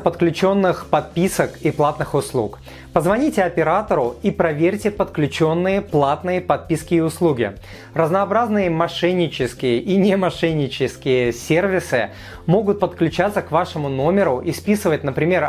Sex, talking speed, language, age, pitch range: male, 110 wpm, Russian, 30-49, 145-185 Hz